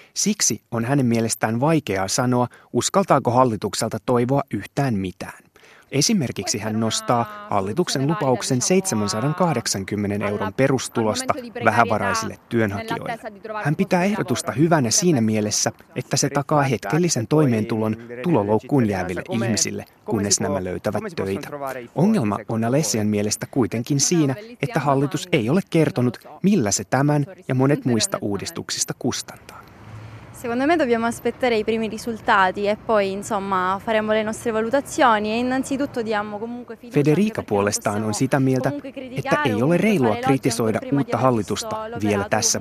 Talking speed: 100 wpm